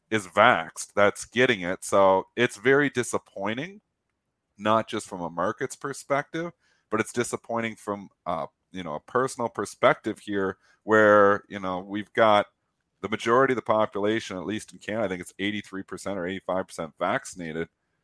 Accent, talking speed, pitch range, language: American, 155 wpm, 100-120 Hz, English